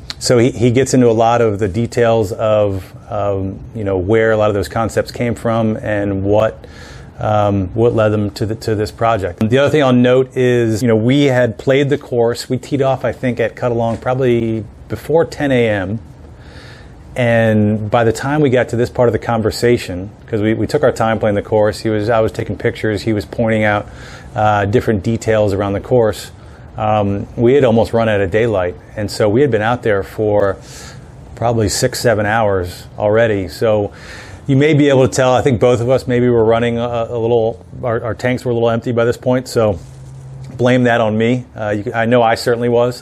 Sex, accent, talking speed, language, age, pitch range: male, American, 220 wpm, English, 30-49, 105-120 Hz